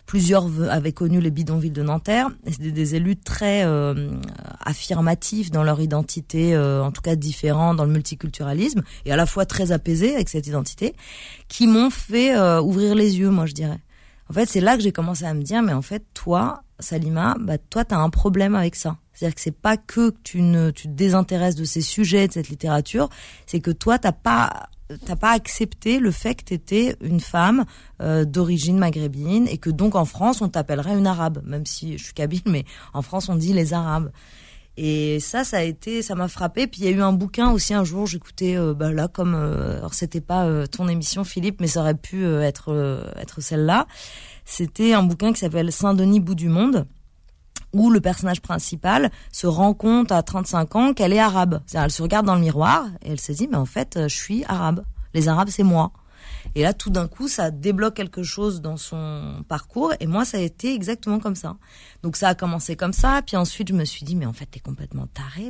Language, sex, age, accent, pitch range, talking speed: French, female, 20-39, French, 155-200 Hz, 225 wpm